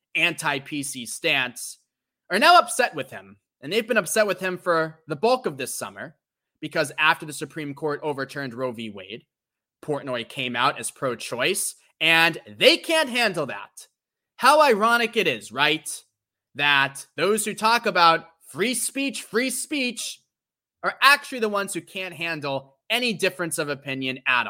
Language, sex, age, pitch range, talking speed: English, male, 20-39, 130-180 Hz, 155 wpm